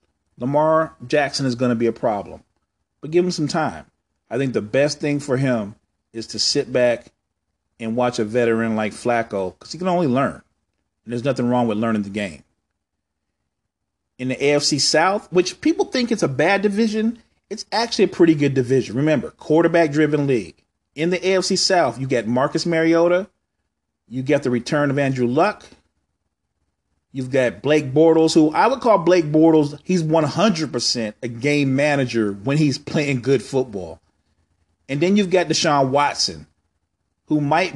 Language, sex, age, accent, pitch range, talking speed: English, male, 40-59, American, 110-160 Hz, 170 wpm